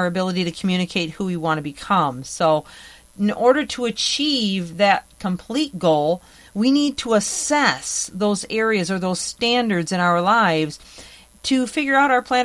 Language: English